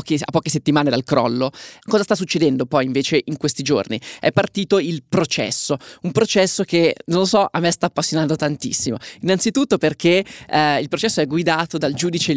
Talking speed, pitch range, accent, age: 180 wpm, 135-170 Hz, native, 20-39